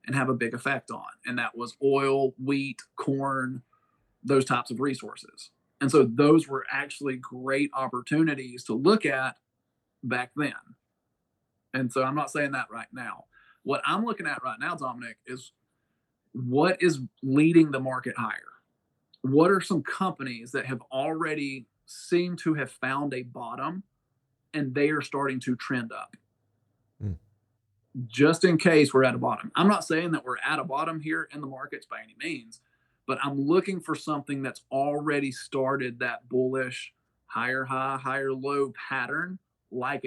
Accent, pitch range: American, 130-150 Hz